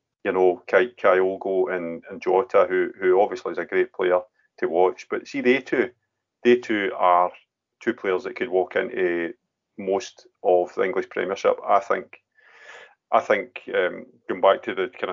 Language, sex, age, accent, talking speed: English, male, 30-49, British, 180 wpm